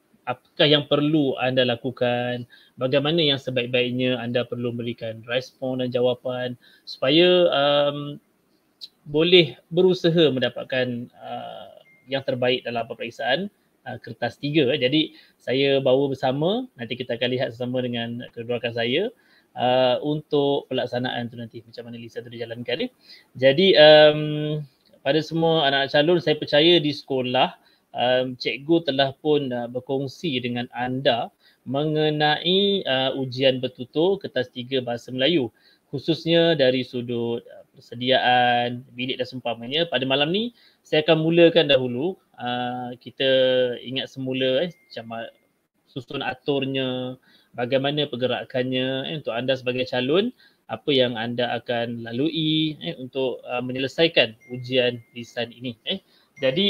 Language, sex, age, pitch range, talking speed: Malay, male, 20-39, 125-150 Hz, 125 wpm